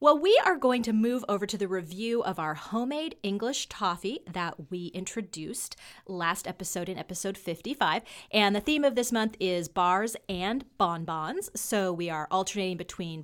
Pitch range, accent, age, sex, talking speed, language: 170-225 Hz, American, 30-49, female, 170 wpm, English